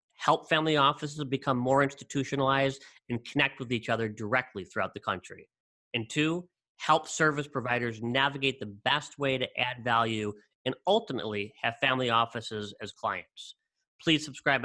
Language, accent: English, American